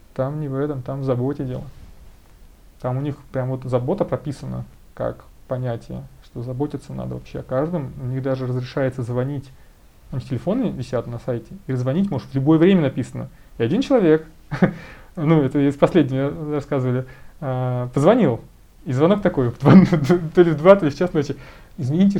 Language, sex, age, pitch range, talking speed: Russian, male, 20-39, 135-205 Hz, 165 wpm